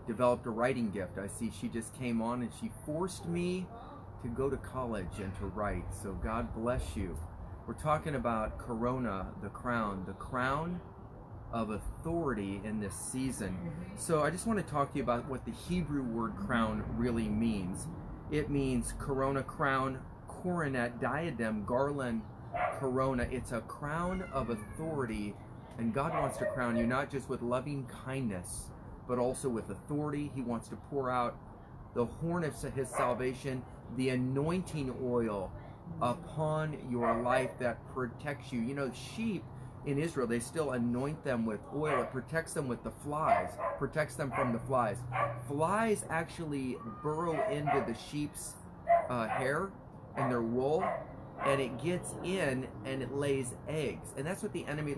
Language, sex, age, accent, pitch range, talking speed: English, male, 30-49, American, 115-140 Hz, 160 wpm